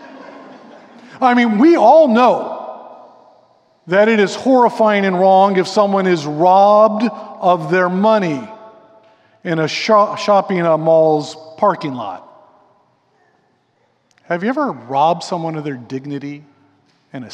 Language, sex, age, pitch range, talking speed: English, male, 50-69, 165-245 Hz, 120 wpm